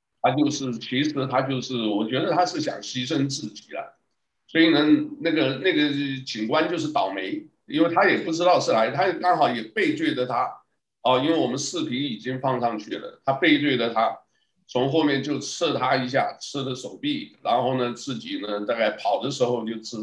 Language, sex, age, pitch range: Chinese, male, 50-69, 115-150 Hz